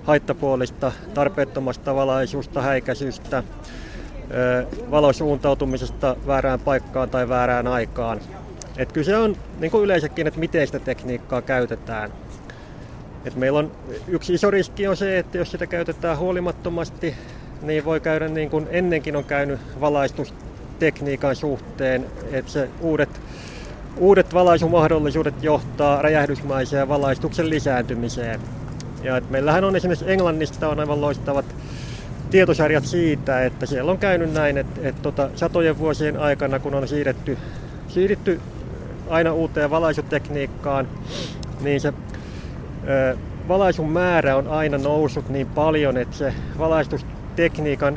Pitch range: 130-160 Hz